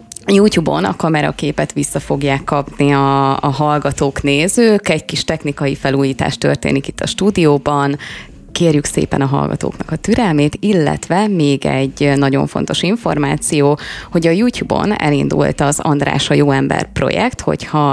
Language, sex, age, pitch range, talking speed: Hungarian, female, 20-39, 140-175 Hz, 135 wpm